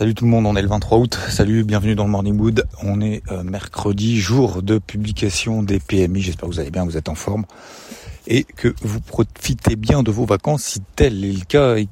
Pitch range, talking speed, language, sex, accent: 95-115 Hz, 235 wpm, French, male, French